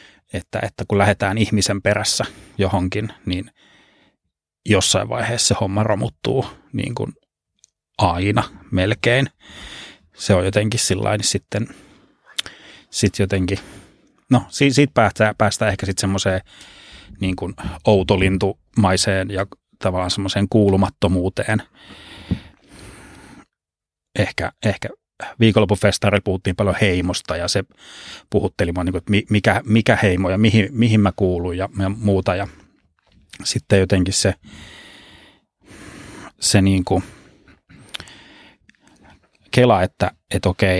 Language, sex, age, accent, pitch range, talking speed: Finnish, male, 30-49, native, 95-105 Hz, 95 wpm